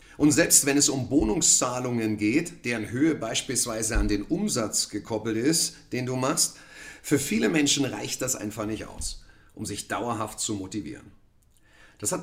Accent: German